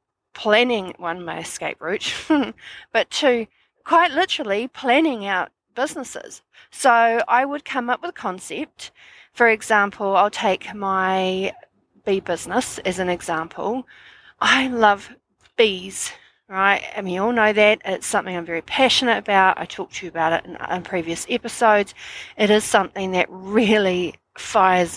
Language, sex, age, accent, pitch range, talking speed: English, female, 40-59, Australian, 180-235 Hz, 150 wpm